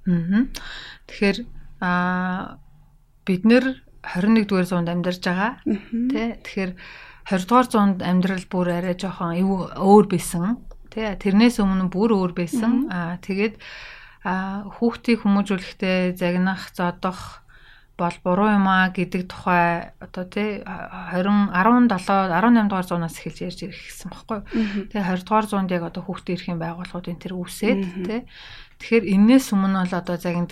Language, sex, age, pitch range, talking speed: English, female, 30-49, 175-200 Hz, 110 wpm